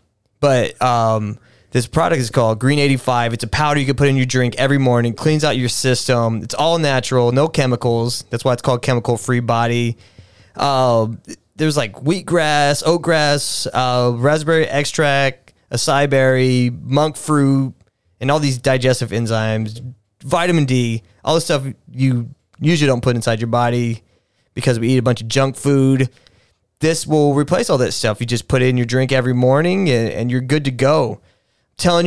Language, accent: English, American